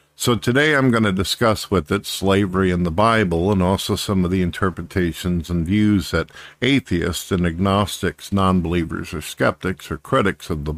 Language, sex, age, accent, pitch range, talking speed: English, male, 50-69, American, 85-105 Hz, 175 wpm